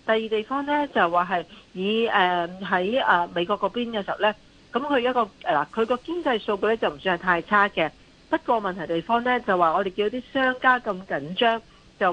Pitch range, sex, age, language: 175-230 Hz, female, 40-59, Chinese